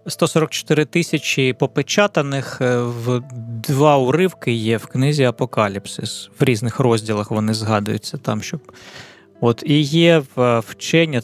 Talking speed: 105 wpm